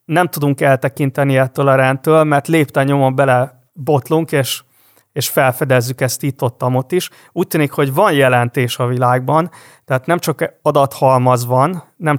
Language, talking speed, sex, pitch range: Hungarian, 150 wpm, male, 130-150 Hz